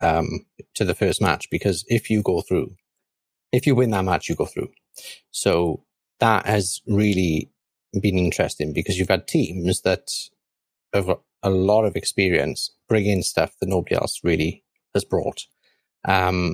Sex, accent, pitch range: male, British, 90-110 Hz